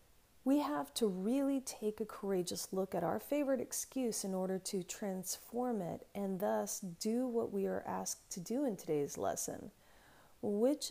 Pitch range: 180-240 Hz